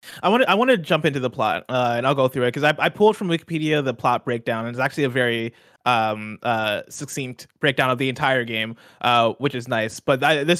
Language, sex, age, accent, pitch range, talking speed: English, male, 20-39, American, 120-155 Hz, 255 wpm